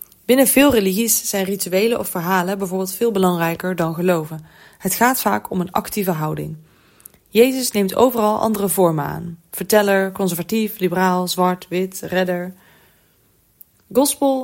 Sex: female